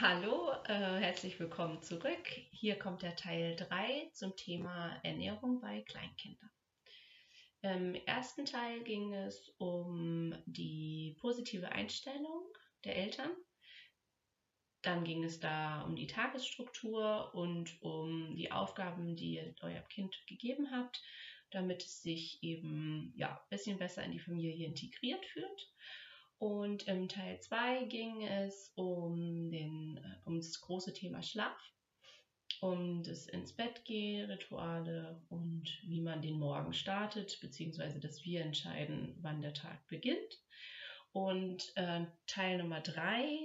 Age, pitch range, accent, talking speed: 30-49, 165-205 Hz, German, 125 wpm